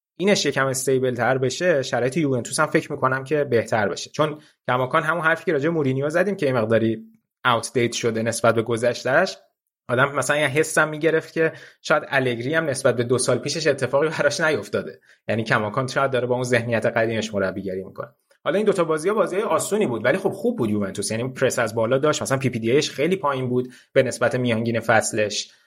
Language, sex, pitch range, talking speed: Persian, male, 115-145 Hz, 200 wpm